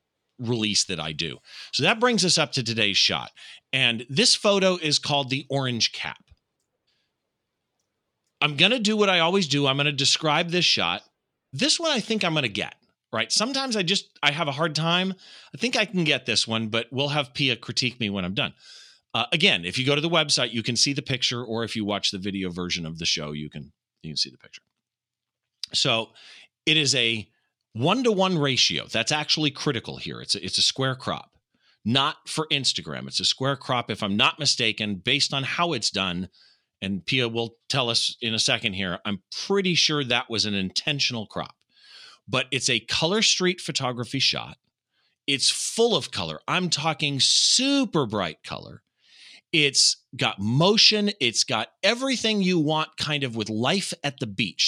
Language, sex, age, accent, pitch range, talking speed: English, male, 40-59, American, 115-165 Hz, 195 wpm